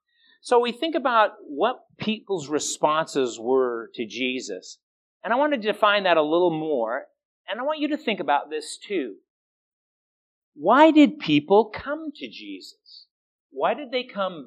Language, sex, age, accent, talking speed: English, male, 50-69, American, 160 wpm